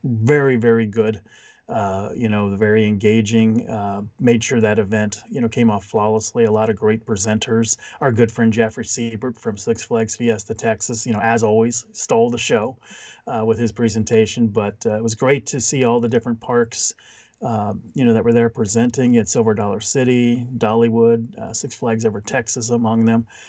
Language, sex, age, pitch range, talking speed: English, male, 40-59, 110-125 Hz, 190 wpm